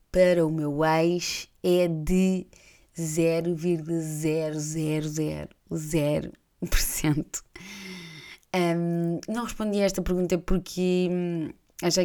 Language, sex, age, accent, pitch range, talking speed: Portuguese, female, 20-39, Brazilian, 155-185 Hz, 70 wpm